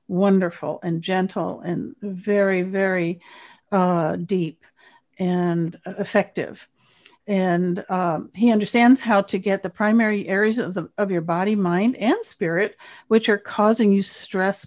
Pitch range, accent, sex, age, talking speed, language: 180-220 Hz, American, female, 50-69, 135 wpm, English